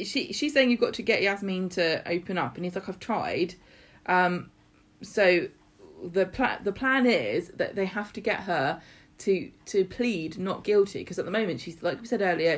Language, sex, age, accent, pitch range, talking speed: English, female, 20-39, British, 165-210 Hz, 205 wpm